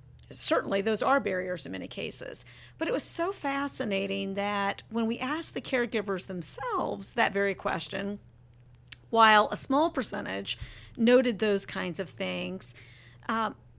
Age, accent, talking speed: 50-69, American, 140 wpm